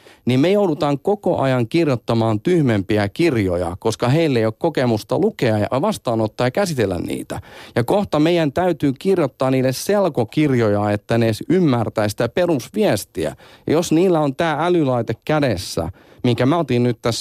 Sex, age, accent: male, 40-59, native